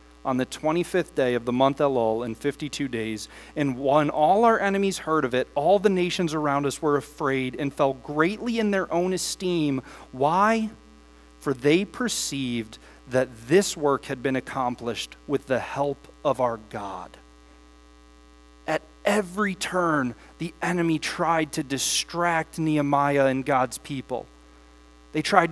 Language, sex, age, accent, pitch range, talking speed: English, male, 30-49, American, 120-180 Hz, 150 wpm